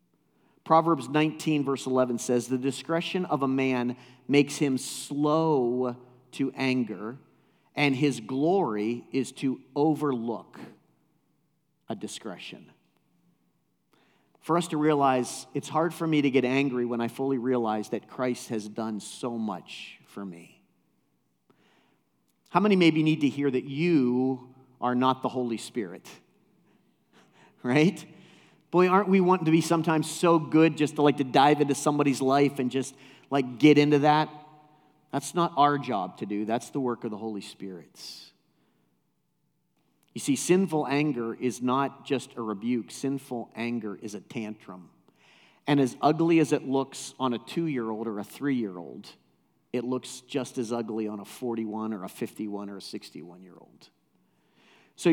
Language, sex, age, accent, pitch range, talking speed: English, male, 50-69, American, 120-150 Hz, 150 wpm